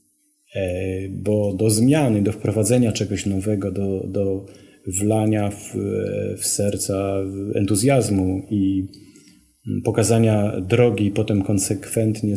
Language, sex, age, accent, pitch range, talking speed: English, male, 30-49, Polish, 100-115 Hz, 95 wpm